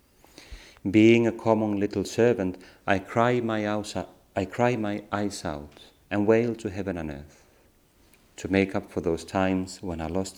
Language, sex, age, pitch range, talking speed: Finnish, male, 30-49, 85-105 Hz, 145 wpm